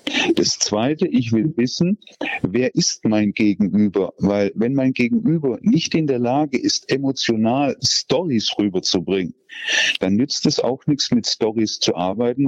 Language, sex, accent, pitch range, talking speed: German, male, German, 110-140 Hz, 145 wpm